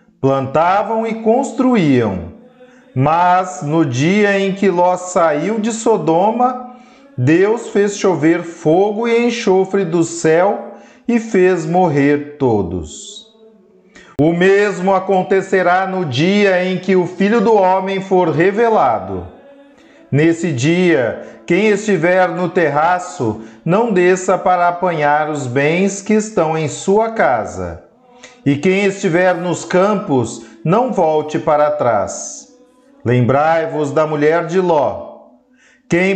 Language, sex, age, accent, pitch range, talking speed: Portuguese, male, 40-59, Brazilian, 160-215 Hz, 115 wpm